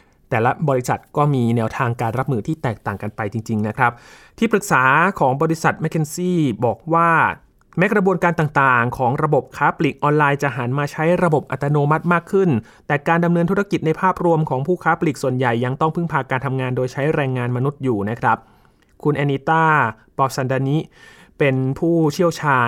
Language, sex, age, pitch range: Thai, male, 20-39, 125-165 Hz